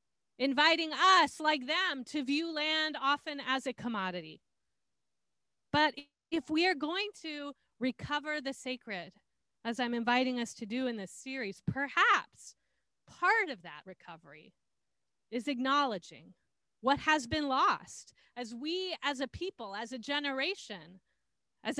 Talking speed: 135 wpm